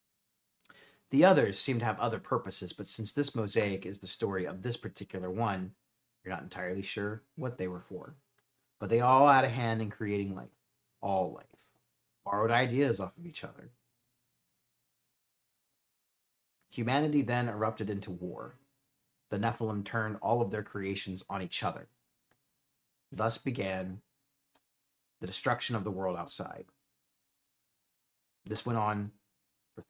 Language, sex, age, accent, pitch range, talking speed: English, male, 30-49, American, 100-135 Hz, 140 wpm